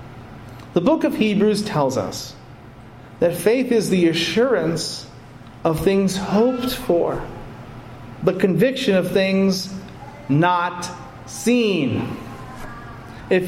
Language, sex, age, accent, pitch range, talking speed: English, male, 40-59, American, 125-185 Hz, 100 wpm